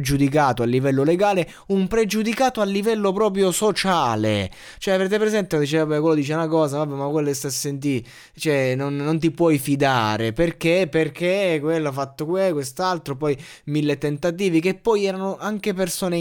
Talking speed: 155 wpm